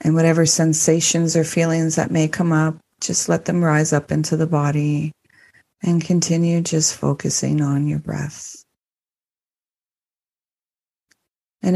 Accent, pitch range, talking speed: American, 140-165 Hz, 130 wpm